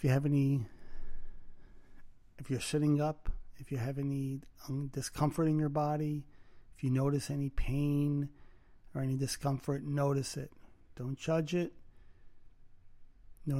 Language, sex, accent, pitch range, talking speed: English, male, American, 115-145 Hz, 130 wpm